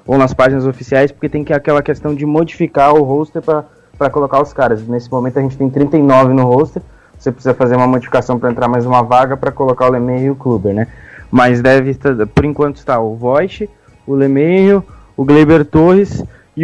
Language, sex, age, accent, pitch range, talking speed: Portuguese, male, 20-39, Brazilian, 125-150 Hz, 200 wpm